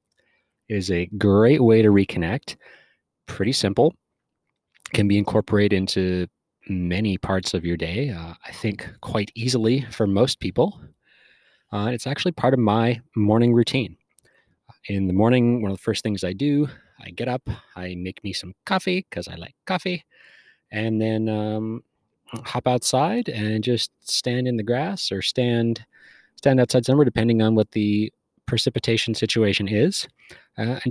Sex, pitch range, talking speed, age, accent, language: male, 95-125 Hz, 160 wpm, 30-49, American, English